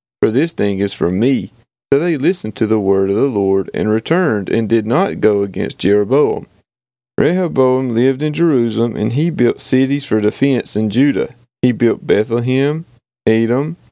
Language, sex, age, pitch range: English, male, 30-49, 110-140 Hz